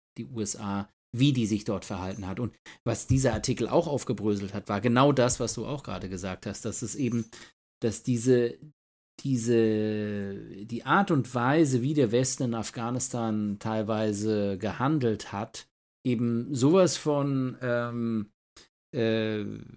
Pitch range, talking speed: 110-130 Hz, 145 wpm